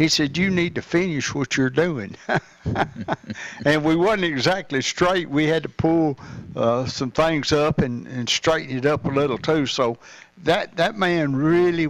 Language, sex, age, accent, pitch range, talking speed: English, male, 60-79, American, 125-155 Hz, 175 wpm